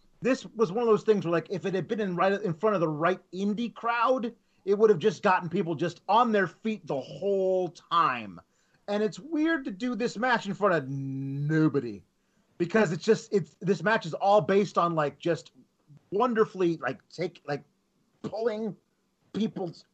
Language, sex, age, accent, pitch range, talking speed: English, male, 30-49, American, 150-210 Hz, 190 wpm